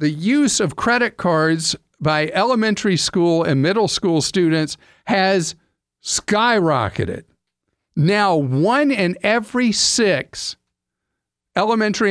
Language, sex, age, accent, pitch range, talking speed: English, male, 50-69, American, 150-205 Hz, 100 wpm